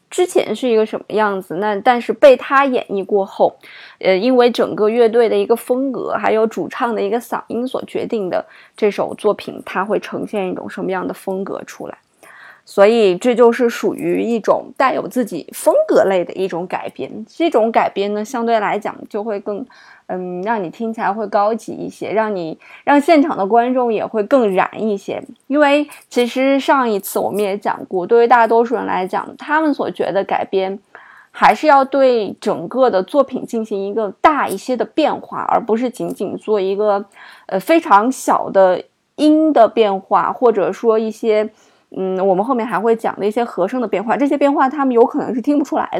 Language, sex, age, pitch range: Chinese, female, 20-39, 205-265 Hz